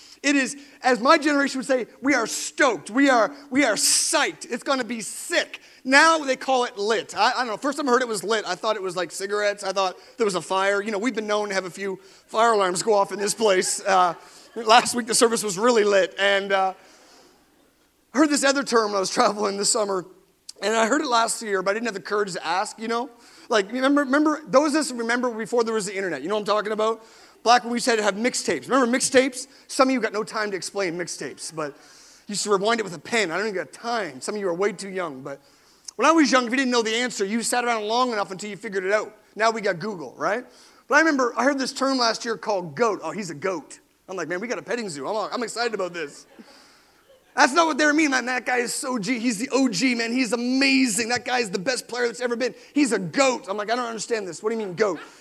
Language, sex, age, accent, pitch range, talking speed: English, male, 30-49, American, 205-260 Hz, 275 wpm